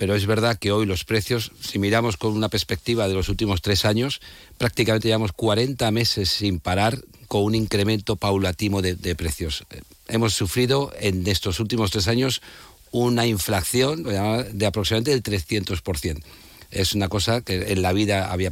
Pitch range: 95-110 Hz